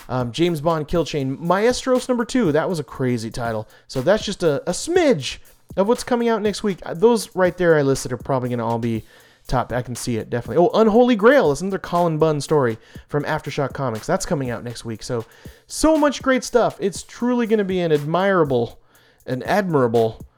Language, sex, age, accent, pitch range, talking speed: English, male, 30-49, American, 135-220 Hz, 210 wpm